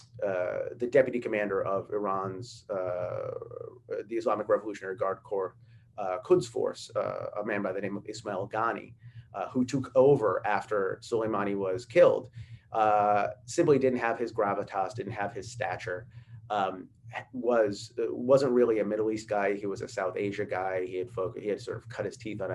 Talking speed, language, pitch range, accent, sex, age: 180 wpm, English, 105-125 Hz, American, male, 30-49